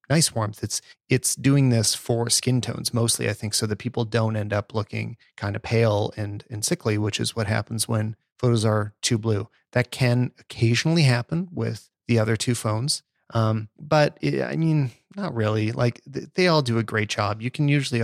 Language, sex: English, male